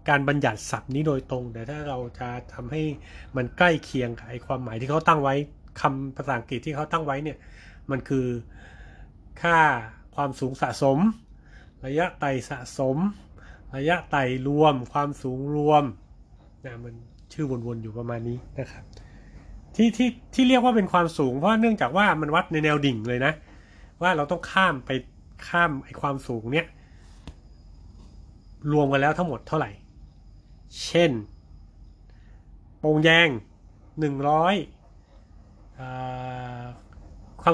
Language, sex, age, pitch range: Thai, male, 20-39, 110-150 Hz